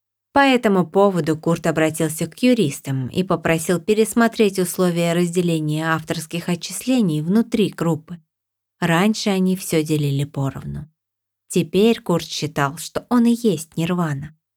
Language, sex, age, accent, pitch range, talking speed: Russian, female, 20-39, native, 150-190 Hz, 120 wpm